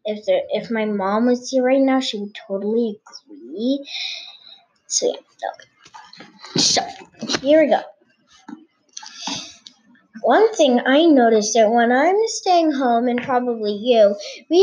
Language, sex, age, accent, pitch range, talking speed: English, female, 10-29, American, 230-310 Hz, 135 wpm